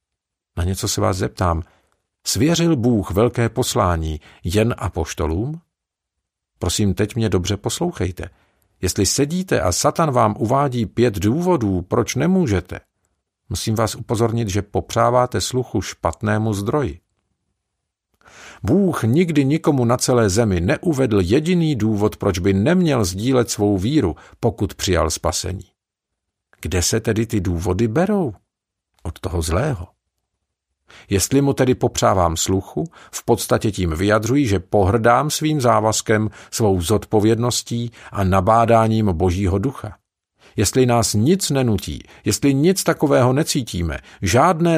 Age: 50-69